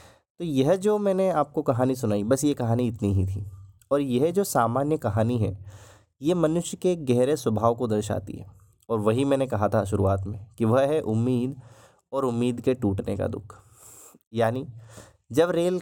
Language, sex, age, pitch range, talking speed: Hindi, male, 20-39, 110-140 Hz, 180 wpm